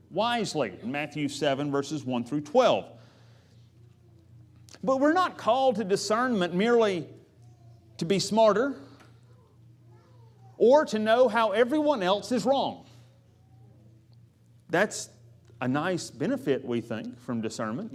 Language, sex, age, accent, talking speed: English, male, 40-59, American, 110 wpm